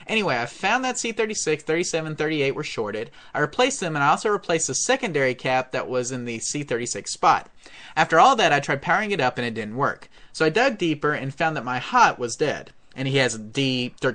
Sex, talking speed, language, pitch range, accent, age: male, 225 wpm, English, 130-180 Hz, American, 30-49